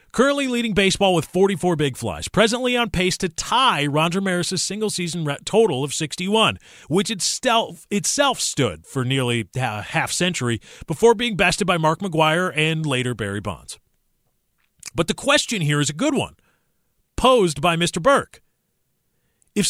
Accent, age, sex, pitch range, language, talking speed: American, 40-59, male, 135-195 Hz, English, 150 wpm